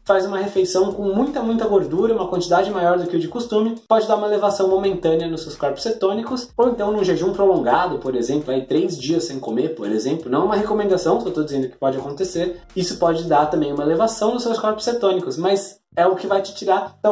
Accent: Brazilian